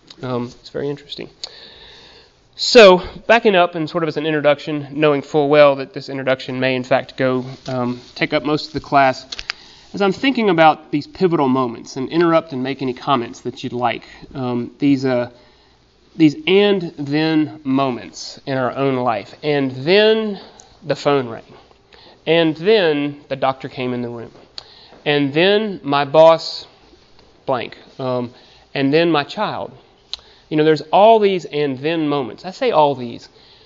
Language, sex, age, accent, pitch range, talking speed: English, male, 30-49, American, 135-185 Hz, 165 wpm